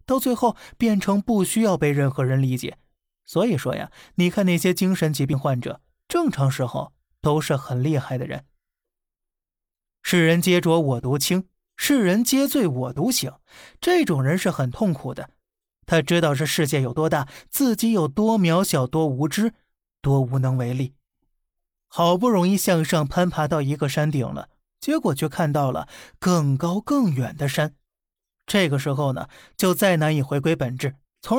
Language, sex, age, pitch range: Chinese, male, 20-39, 140-190 Hz